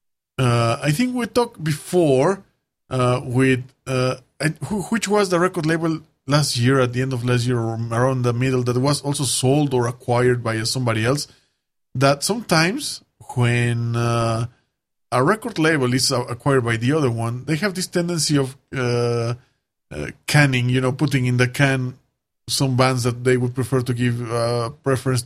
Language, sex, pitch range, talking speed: English, male, 125-160 Hz, 180 wpm